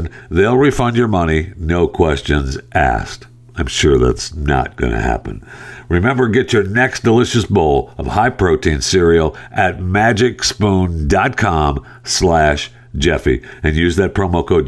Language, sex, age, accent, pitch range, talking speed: English, male, 50-69, American, 85-120 Hz, 130 wpm